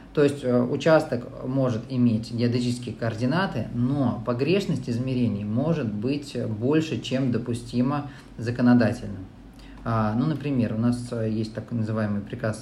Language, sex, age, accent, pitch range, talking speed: Russian, male, 20-39, native, 110-130 Hz, 115 wpm